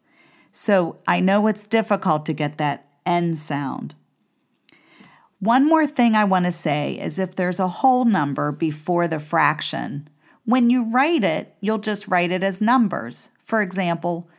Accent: American